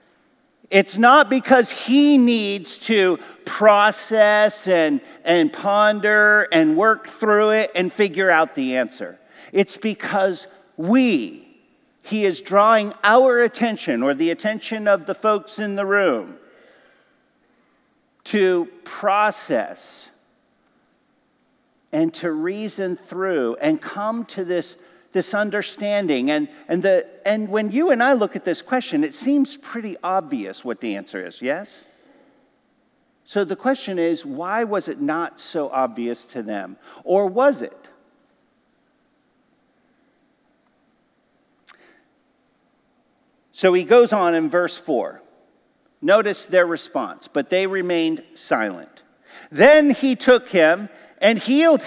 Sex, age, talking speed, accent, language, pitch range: male, 50-69, 120 wpm, American, English, 195-275 Hz